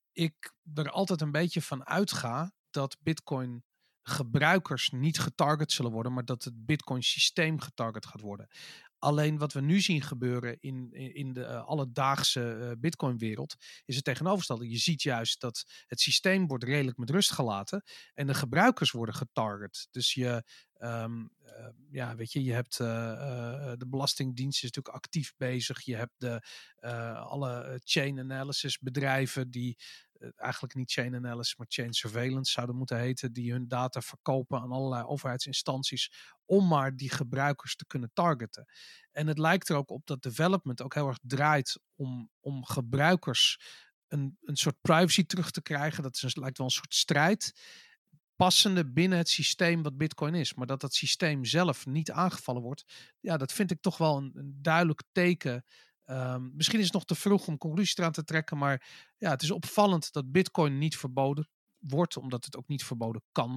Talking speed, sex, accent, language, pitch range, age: 175 wpm, male, Dutch, Dutch, 125-160 Hz, 40-59